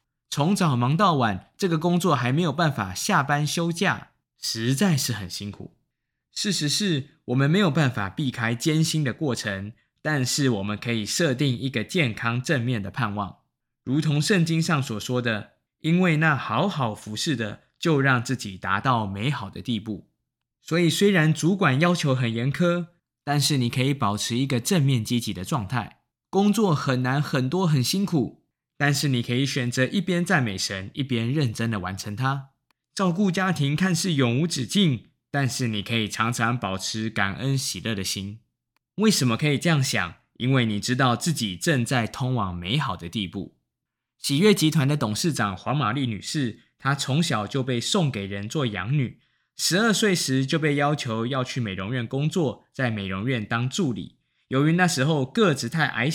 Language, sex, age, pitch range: Chinese, male, 20-39, 115-155 Hz